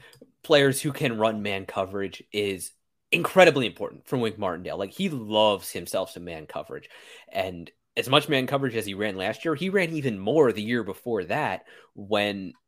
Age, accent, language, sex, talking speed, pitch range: 20-39, American, English, male, 180 wpm, 105-145 Hz